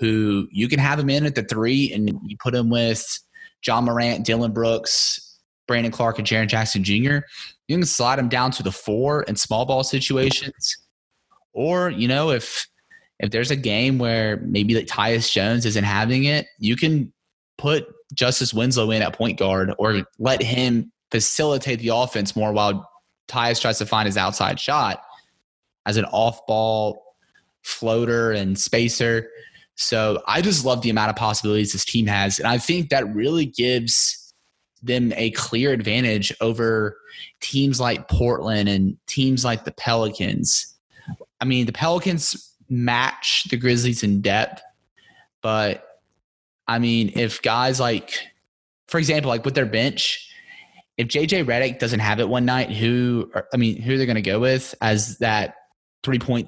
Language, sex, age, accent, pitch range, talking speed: English, male, 20-39, American, 110-130 Hz, 165 wpm